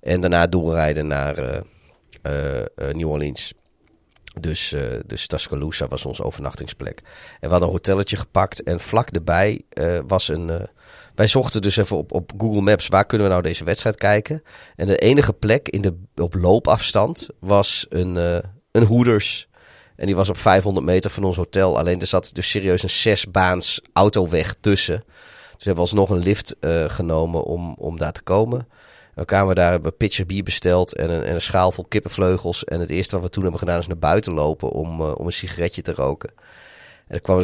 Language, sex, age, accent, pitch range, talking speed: Dutch, male, 40-59, Dutch, 85-100 Hz, 200 wpm